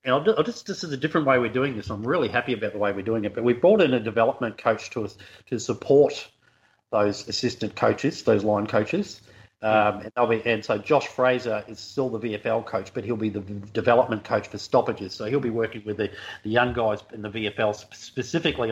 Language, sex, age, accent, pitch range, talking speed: English, male, 40-59, Australian, 110-130 Hz, 225 wpm